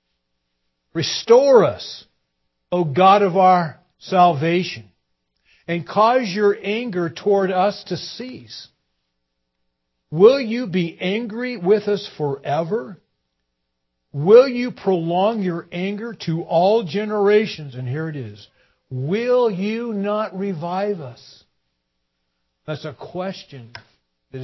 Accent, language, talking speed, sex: American, English, 105 wpm, male